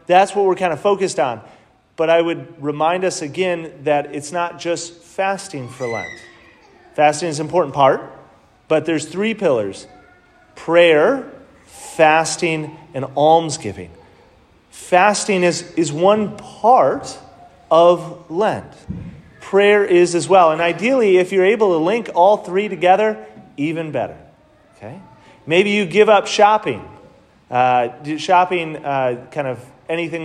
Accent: American